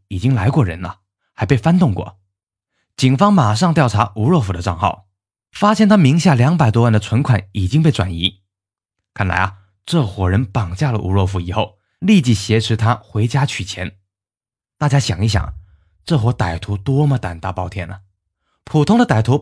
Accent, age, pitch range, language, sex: native, 20-39, 95-140 Hz, Chinese, male